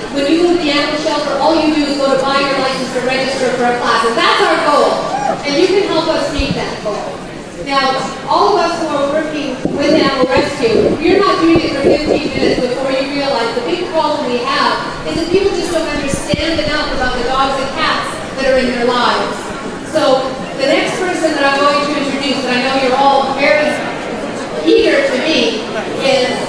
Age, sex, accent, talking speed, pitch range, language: 40-59, female, American, 215 wpm, 260-315 Hz, English